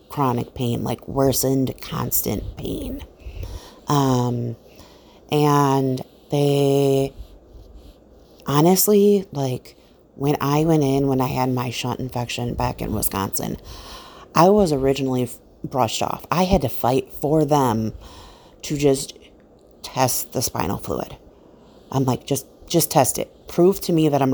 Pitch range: 125-140 Hz